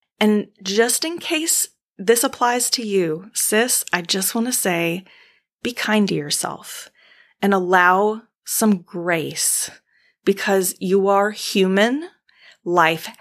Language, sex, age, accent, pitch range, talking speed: English, female, 30-49, American, 175-230 Hz, 125 wpm